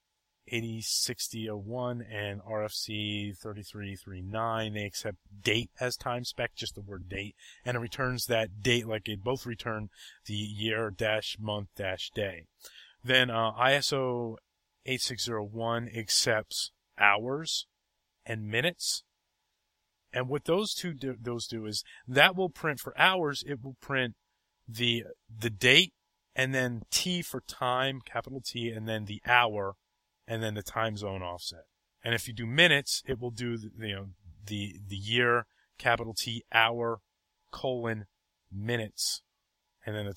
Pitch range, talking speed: 105-125 Hz, 140 wpm